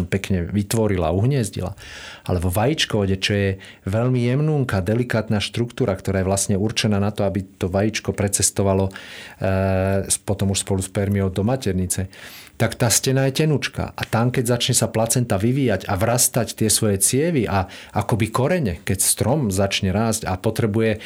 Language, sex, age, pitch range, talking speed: Slovak, male, 40-59, 95-115 Hz, 160 wpm